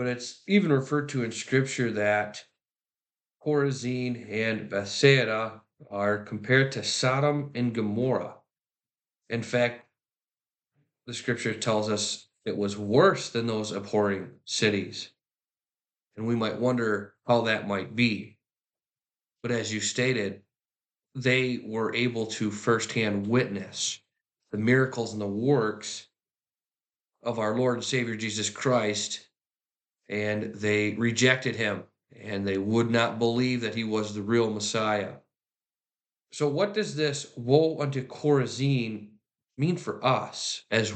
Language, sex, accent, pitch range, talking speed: English, male, American, 105-125 Hz, 125 wpm